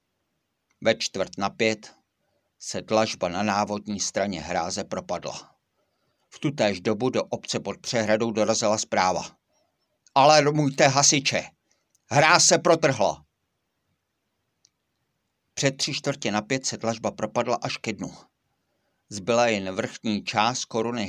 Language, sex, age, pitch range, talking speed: Czech, male, 50-69, 105-120 Hz, 120 wpm